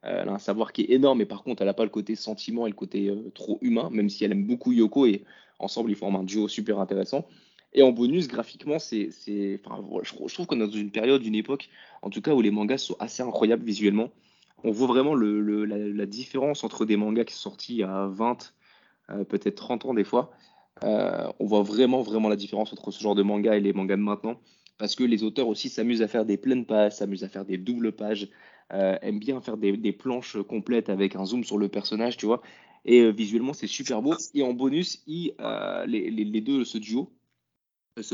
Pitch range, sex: 105-120 Hz, male